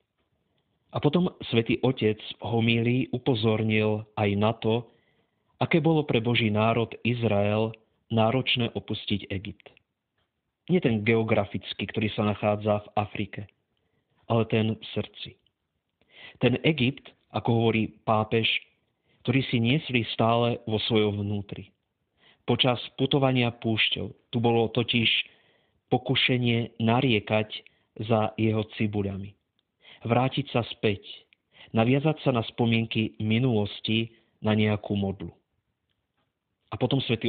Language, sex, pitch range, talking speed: Slovak, male, 105-120 Hz, 110 wpm